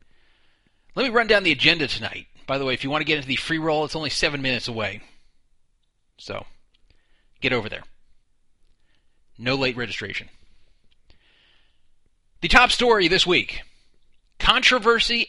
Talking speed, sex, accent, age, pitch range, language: 145 wpm, male, American, 30-49, 120-180 Hz, English